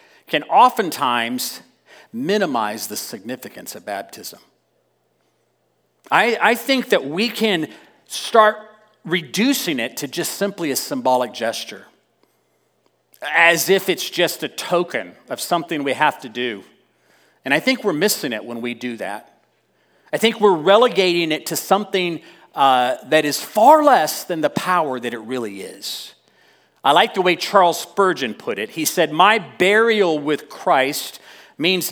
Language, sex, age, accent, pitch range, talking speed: English, male, 40-59, American, 155-215 Hz, 145 wpm